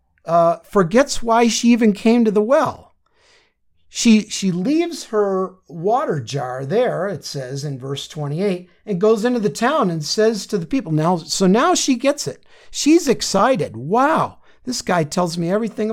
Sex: male